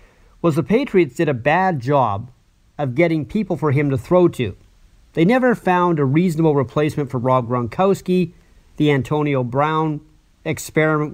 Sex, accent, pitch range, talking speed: male, American, 125-175 Hz, 150 wpm